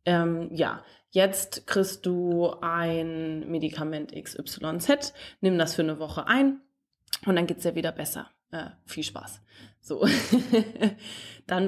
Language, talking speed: English, 130 wpm